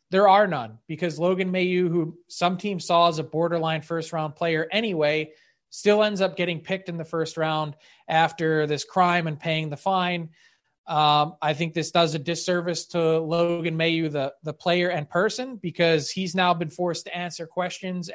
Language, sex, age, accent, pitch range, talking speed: English, male, 20-39, American, 160-185 Hz, 185 wpm